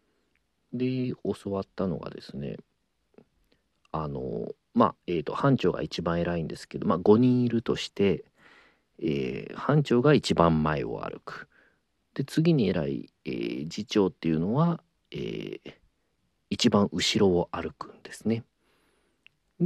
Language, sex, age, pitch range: Japanese, male, 40-59, 85-130 Hz